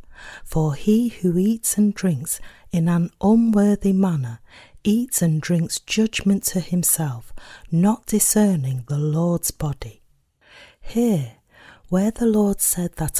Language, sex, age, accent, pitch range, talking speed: English, female, 40-59, British, 155-205 Hz, 125 wpm